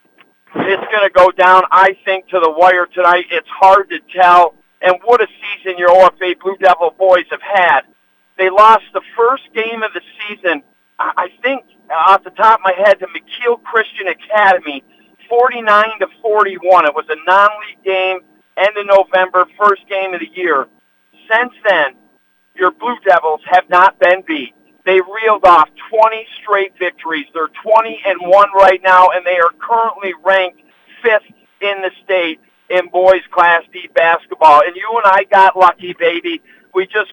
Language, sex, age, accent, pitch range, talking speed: English, male, 50-69, American, 180-220 Hz, 170 wpm